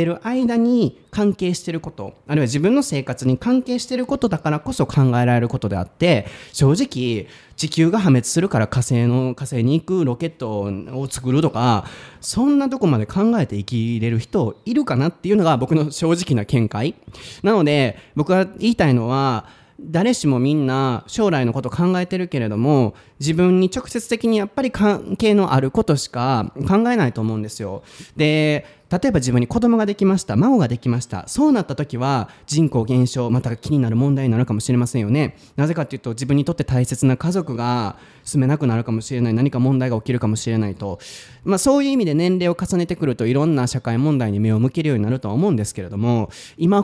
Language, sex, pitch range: Japanese, male, 120-175 Hz